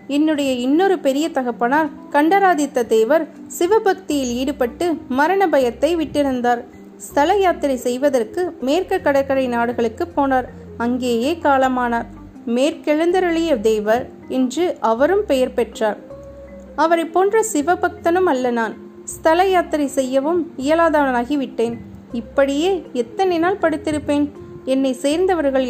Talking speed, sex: 95 wpm, female